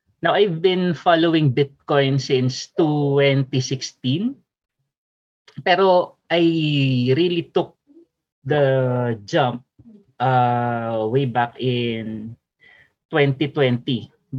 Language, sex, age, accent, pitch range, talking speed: Filipino, male, 20-39, native, 130-160 Hz, 75 wpm